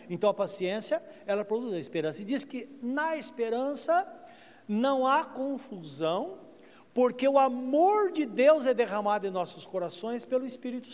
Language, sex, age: Portuguese, male, 60-79